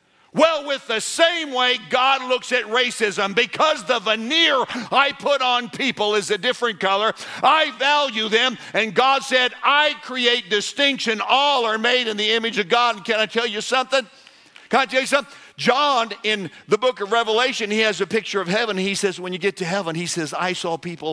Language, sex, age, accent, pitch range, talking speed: English, male, 50-69, American, 150-225 Hz, 200 wpm